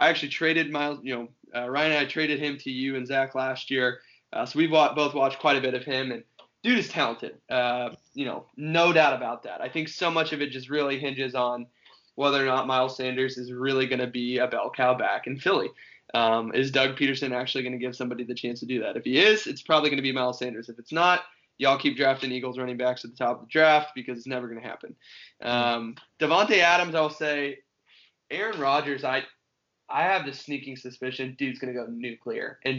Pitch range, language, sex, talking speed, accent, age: 125-150 Hz, English, male, 235 wpm, American, 20-39